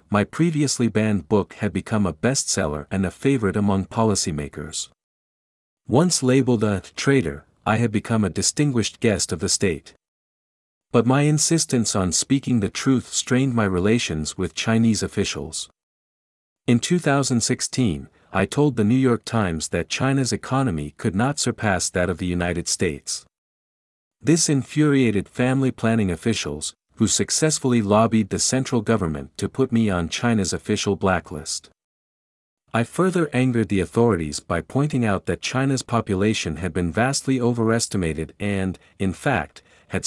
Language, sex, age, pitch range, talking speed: Vietnamese, male, 50-69, 90-125 Hz, 140 wpm